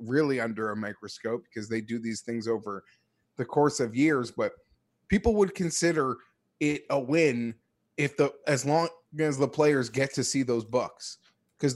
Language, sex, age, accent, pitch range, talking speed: English, male, 30-49, American, 125-160 Hz, 175 wpm